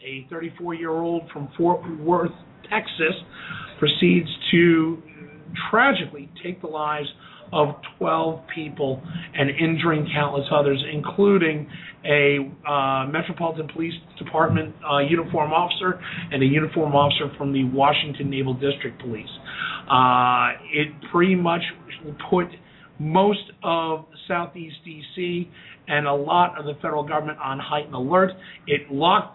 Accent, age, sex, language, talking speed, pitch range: American, 40-59, male, English, 125 wpm, 145-175 Hz